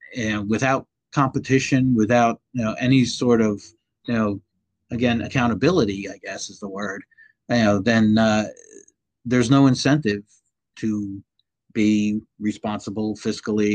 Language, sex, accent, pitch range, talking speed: English, male, American, 105-125 Hz, 120 wpm